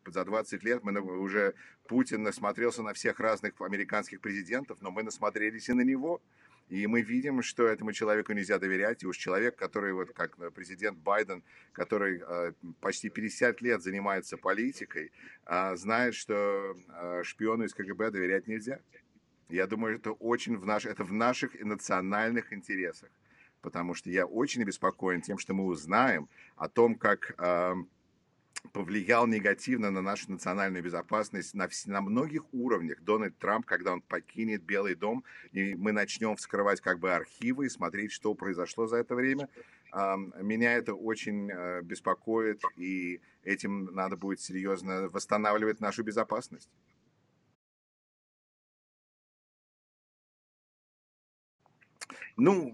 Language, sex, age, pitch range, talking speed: English, male, 50-69, 95-115 Hz, 130 wpm